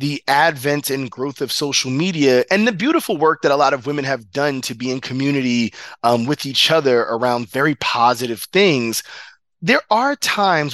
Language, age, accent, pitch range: English, 30-49, American, 125-175 Hz